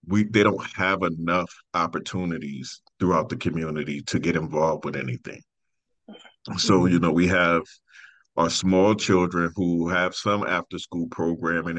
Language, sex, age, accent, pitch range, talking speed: English, male, 40-59, American, 80-95 Hz, 135 wpm